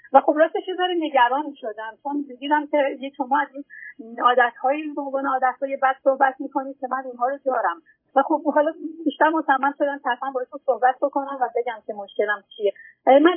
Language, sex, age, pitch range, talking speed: Persian, female, 40-59, 240-300 Hz, 180 wpm